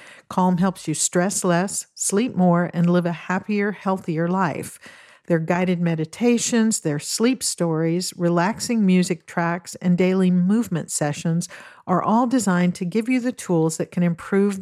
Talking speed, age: 150 wpm, 50-69